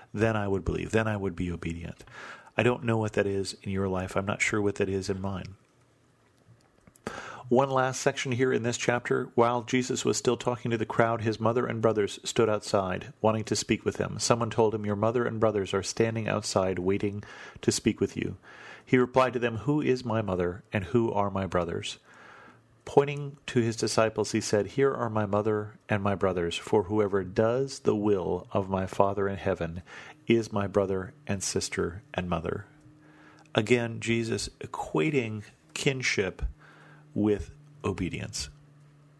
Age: 40-59